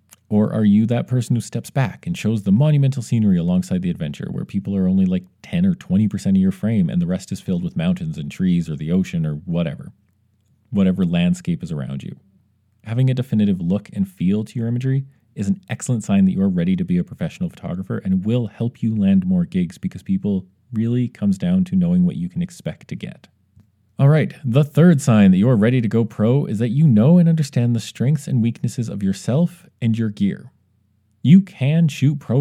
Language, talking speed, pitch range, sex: English, 220 wpm, 105-175 Hz, male